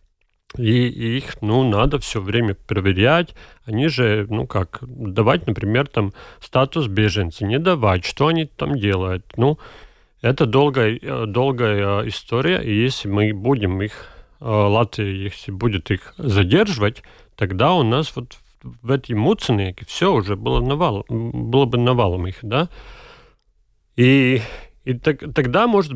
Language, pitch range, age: Russian, 105-135 Hz, 40-59